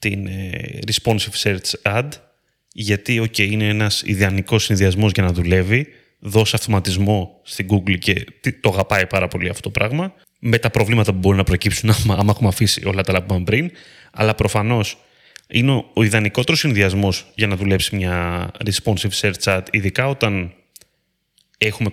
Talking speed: 155 wpm